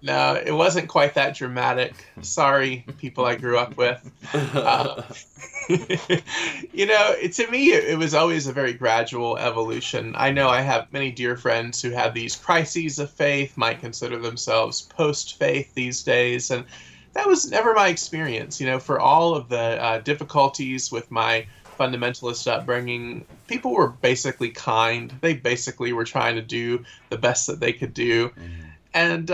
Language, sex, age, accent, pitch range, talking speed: English, male, 20-39, American, 120-155 Hz, 160 wpm